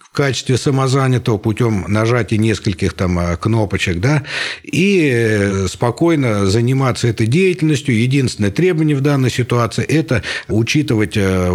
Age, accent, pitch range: 60-79, native, 95-125 Hz